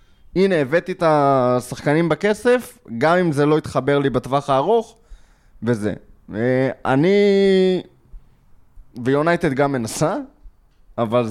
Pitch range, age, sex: 130-185 Hz, 20-39, male